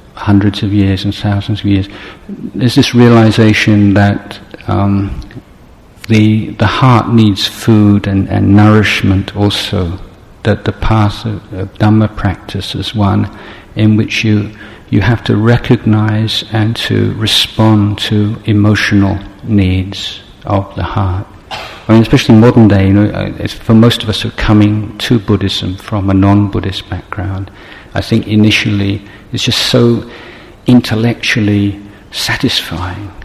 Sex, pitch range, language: male, 100-110 Hz, Thai